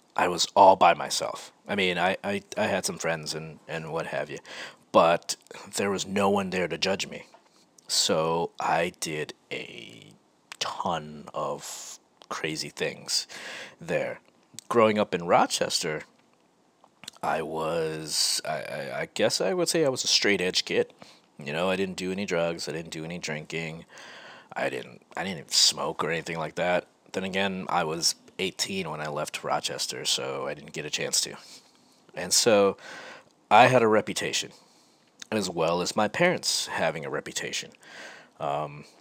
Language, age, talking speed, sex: English, 30-49, 165 wpm, male